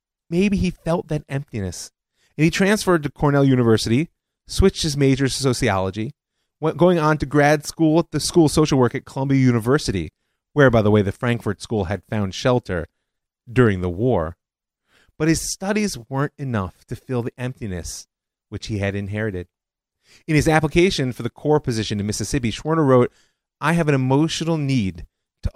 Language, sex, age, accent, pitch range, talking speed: English, male, 30-49, American, 100-145 Hz, 175 wpm